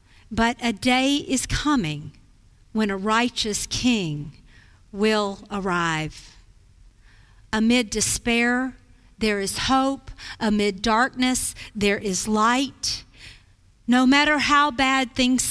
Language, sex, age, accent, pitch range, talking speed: English, female, 50-69, American, 185-275 Hz, 100 wpm